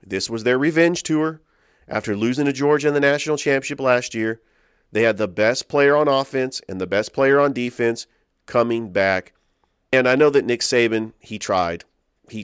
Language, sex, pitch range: English, male, 100-120 Hz